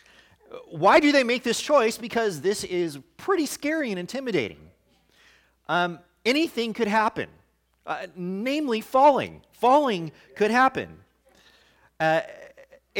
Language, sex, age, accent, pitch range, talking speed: English, male, 40-59, American, 155-235 Hz, 110 wpm